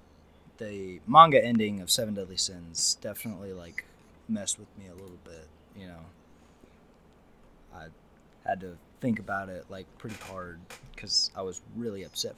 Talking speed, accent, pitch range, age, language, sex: 150 wpm, American, 90-115 Hz, 20-39, English, male